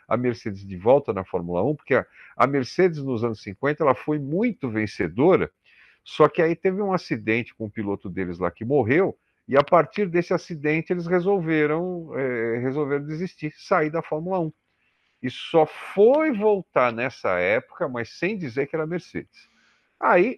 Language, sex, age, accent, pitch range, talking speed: Portuguese, male, 50-69, Brazilian, 105-175 Hz, 175 wpm